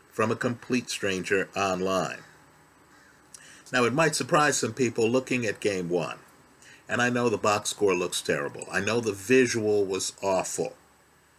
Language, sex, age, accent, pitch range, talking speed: English, male, 50-69, American, 115-140 Hz, 155 wpm